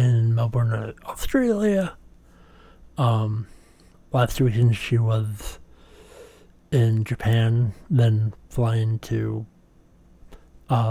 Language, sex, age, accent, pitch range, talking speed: English, male, 60-79, American, 85-125 Hz, 75 wpm